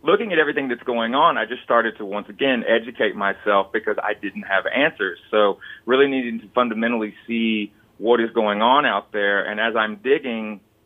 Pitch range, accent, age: 105-120 Hz, American, 30-49